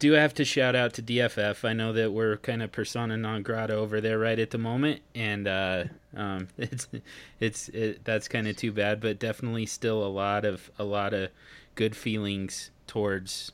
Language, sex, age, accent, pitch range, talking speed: English, male, 30-49, American, 95-115 Hz, 200 wpm